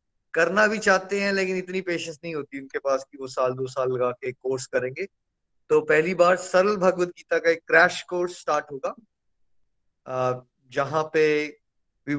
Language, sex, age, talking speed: Hindi, male, 20-39, 170 wpm